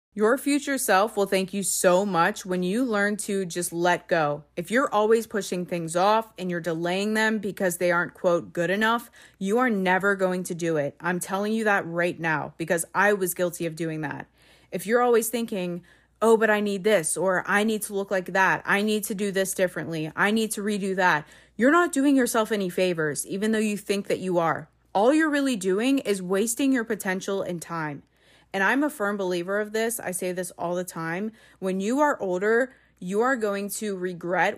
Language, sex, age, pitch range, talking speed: English, female, 20-39, 175-215 Hz, 215 wpm